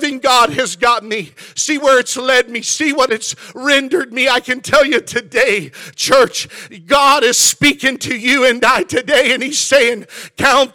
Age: 50-69